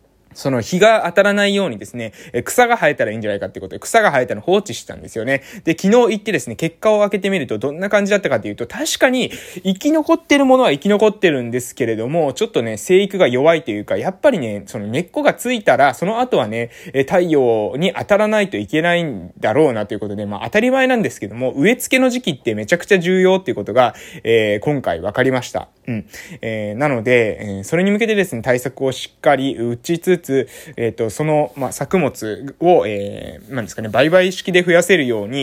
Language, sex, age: Japanese, male, 20-39